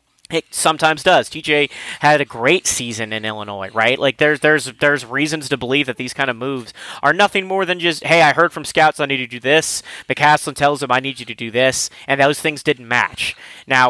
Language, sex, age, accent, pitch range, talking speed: English, male, 30-49, American, 125-150 Hz, 230 wpm